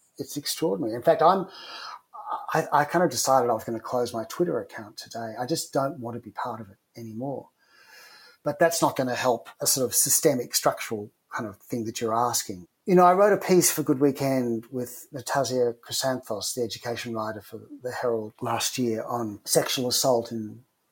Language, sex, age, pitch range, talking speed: English, male, 40-59, 120-150 Hz, 200 wpm